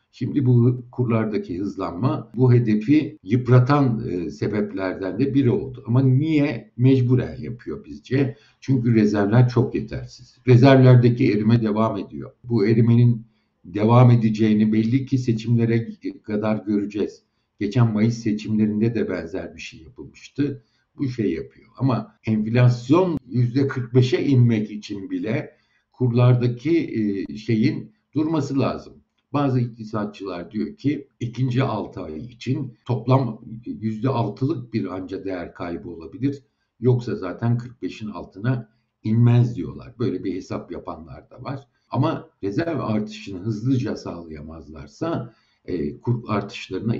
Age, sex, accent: 60-79, male, native